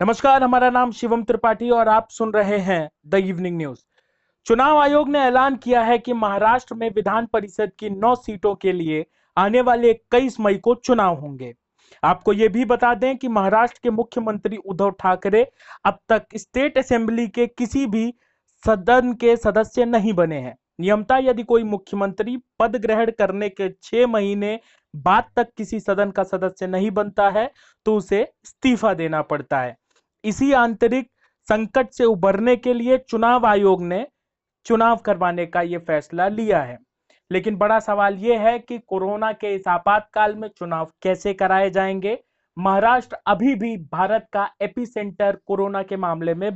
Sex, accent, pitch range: male, native, 190-240 Hz